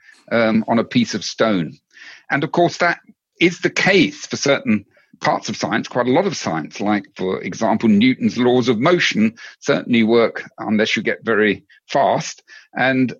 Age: 50-69